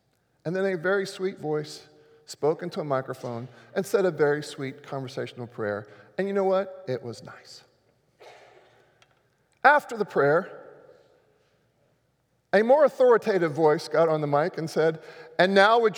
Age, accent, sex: 40-59, American, male